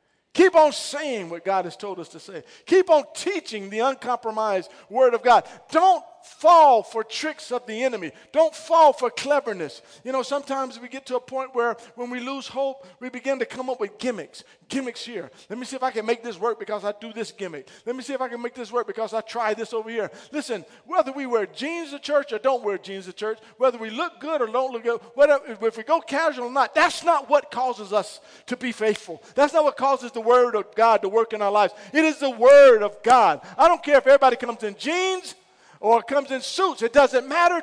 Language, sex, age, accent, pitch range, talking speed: English, male, 50-69, American, 230-315 Hz, 240 wpm